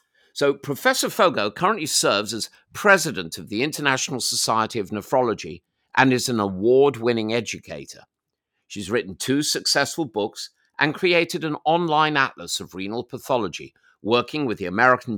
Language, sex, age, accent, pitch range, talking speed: English, male, 50-69, British, 110-155 Hz, 140 wpm